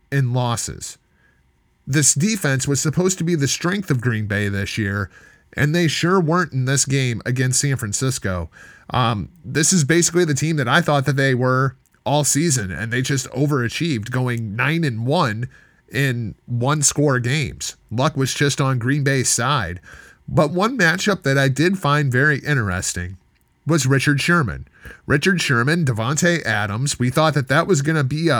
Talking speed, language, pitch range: 175 wpm, English, 125-160 Hz